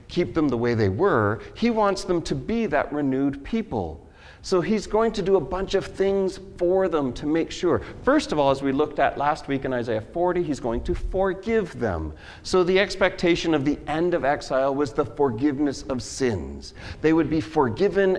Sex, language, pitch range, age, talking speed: male, English, 125-170 Hz, 40-59, 205 wpm